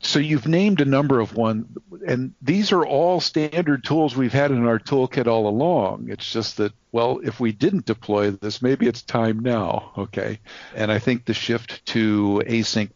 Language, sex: English, male